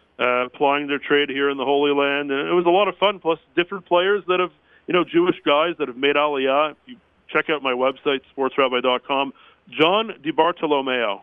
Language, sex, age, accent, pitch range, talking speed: English, male, 40-59, American, 130-165 Hz, 205 wpm